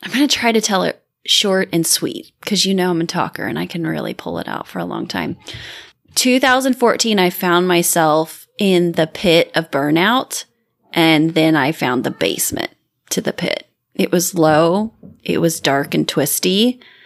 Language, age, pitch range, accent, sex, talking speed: English, 20-39, 170-225 Hz, American, female, 185 wpm